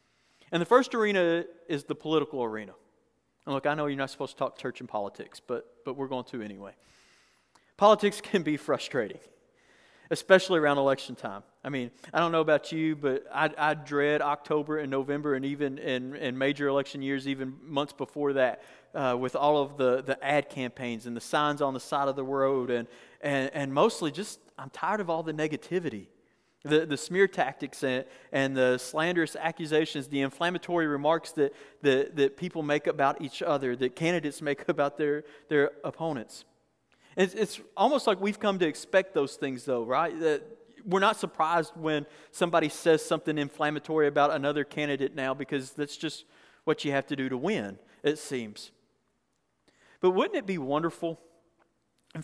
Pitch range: 135-165 Hz